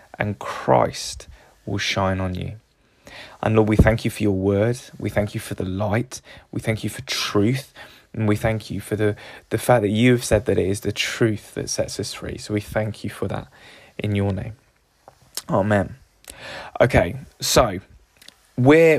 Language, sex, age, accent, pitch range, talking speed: English, male, 20-39, British, 110-135 Hz, 185 wpm